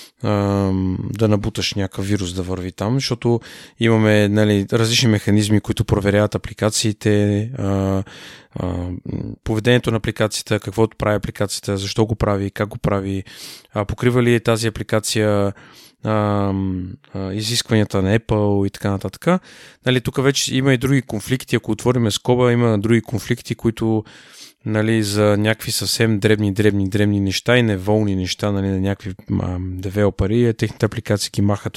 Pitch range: 100-120 Hz